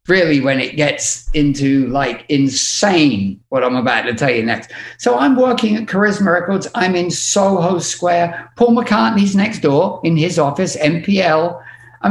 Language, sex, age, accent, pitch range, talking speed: English, male, 50-69, British, 120-185 Hz, 165 wpm